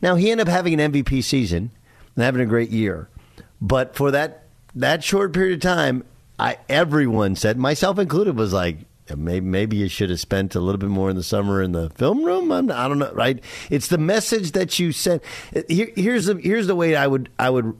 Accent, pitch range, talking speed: American, 100-145 Hz, 225 wpm